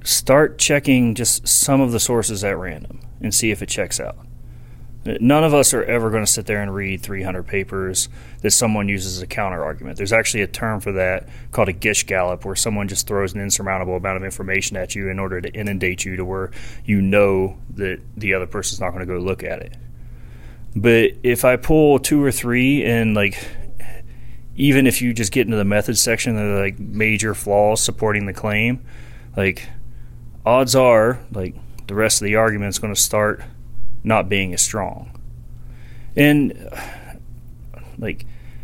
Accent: American